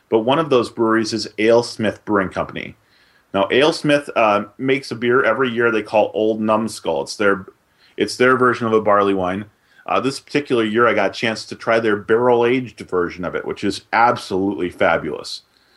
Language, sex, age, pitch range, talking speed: English, male, 30-49, 105-125 Hz, 185 wpm